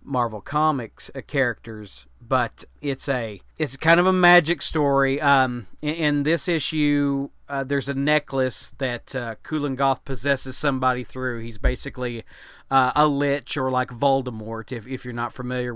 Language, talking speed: English, 155 wpm